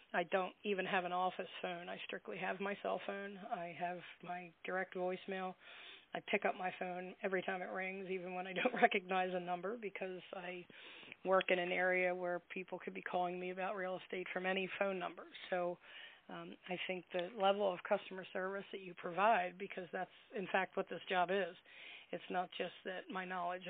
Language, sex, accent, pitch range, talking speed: English, female, American, 180-190 Hz, 200 wpm